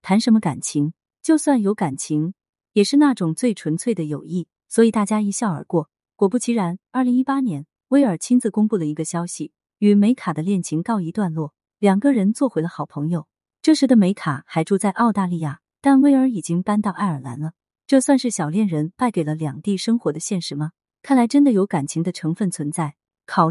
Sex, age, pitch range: female, 30-49, 160-230 Hz